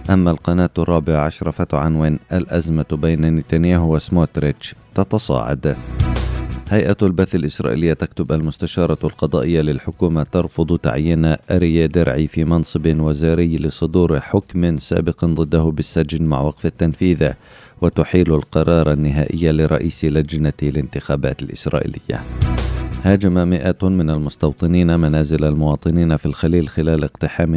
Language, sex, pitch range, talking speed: Arabic, male, 75-85 Hz, 105 wpm